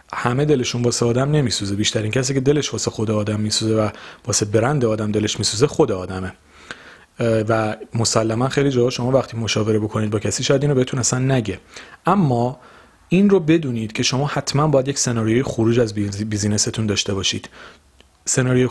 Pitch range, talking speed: 105-140 Hz, 175 wpm